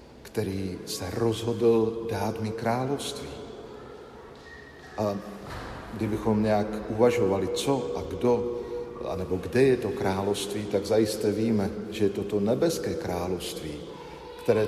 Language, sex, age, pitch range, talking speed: Slovak, male, 50-69, 100-115 Hz, 115 wpm